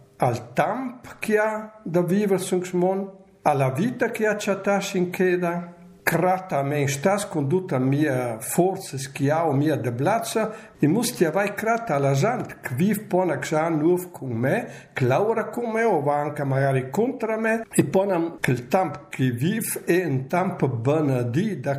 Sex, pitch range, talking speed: male, 140-195 Hz, 155 wpm